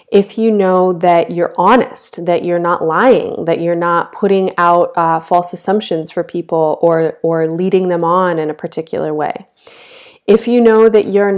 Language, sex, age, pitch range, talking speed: English, female, 30-49, 170-205 Hz, 180 wpm